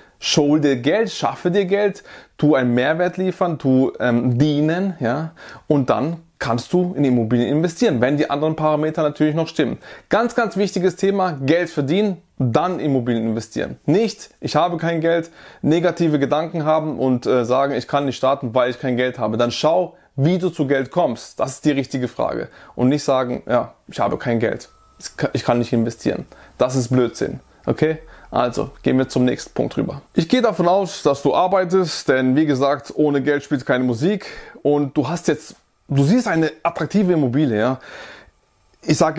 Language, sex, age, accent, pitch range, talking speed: German, male, 20-39, German, 130-170 Hz, 180 wpm